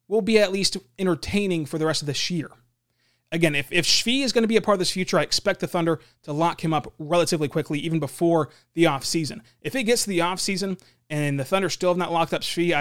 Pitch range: 140-180 Hz